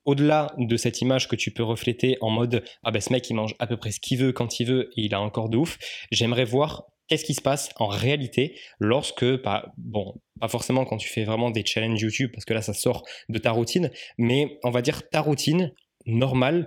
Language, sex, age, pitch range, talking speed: French, male, 20-39, 110-135 Hz, 250 wpm